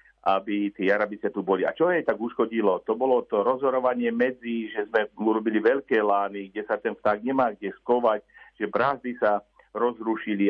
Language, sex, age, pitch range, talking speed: Slovak, male, 50-69, 105-130 Hz, 175 wpm